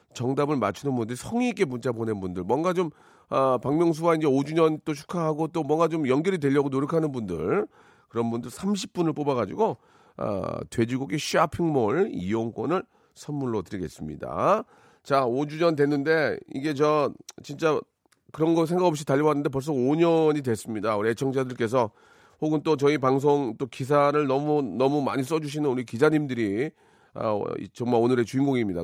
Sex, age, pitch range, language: male, 40-59, 120-160 Hz, Korean